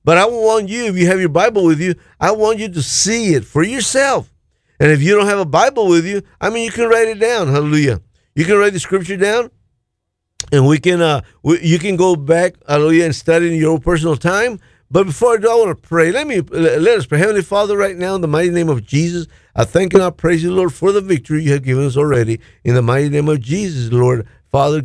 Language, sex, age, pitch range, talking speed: English, male, 50-69, 130-185 Hz, 255 wpm